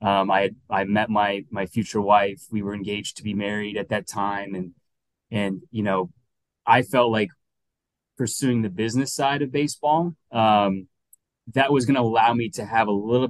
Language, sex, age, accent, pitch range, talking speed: English, male, 20-39, American, 100-120 Hz, 185 wpm